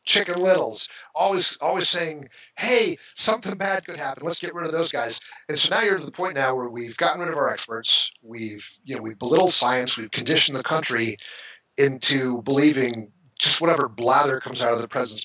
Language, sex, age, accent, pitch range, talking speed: English, male, 40-59, American, 120-160 Hz, 200 wpm